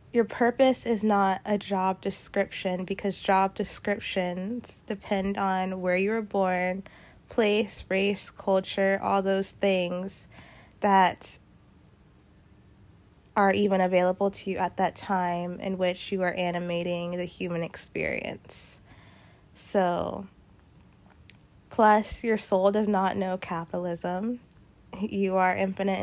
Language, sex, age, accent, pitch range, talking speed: English, female, 20-39, American, 180-200 Hz, 115 wpm